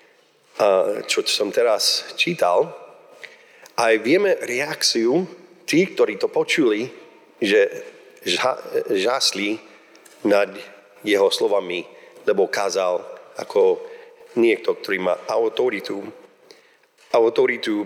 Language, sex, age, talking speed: Slovak, male, 40-59, 85 wpm